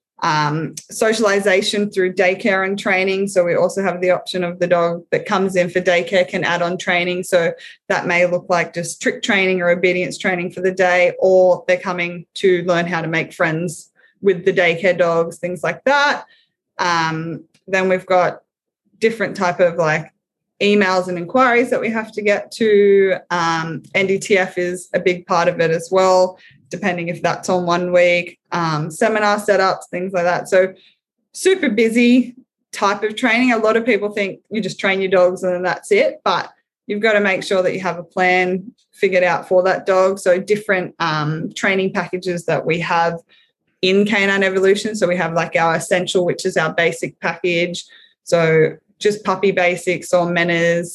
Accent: Australian